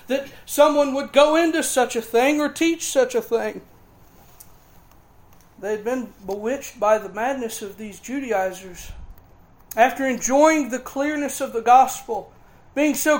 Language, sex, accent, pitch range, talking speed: English, male, American, 235-285 Hz, 140 wpm